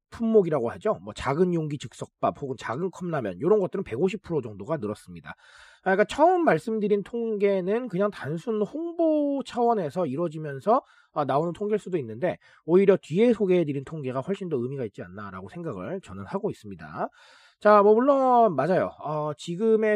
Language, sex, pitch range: Korean, male, 150-220 Hz